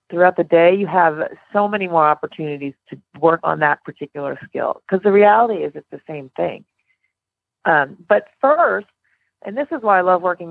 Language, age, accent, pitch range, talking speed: English, 30-49, American, 155-200 Hz, 190 wpm